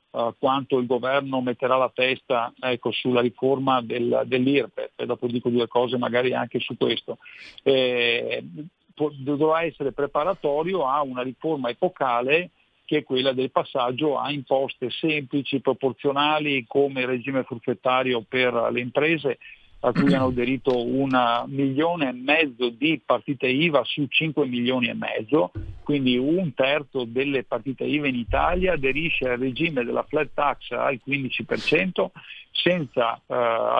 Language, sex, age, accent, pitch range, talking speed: Italian, male, 50-69, native, 125-150 Hz, 140 wpm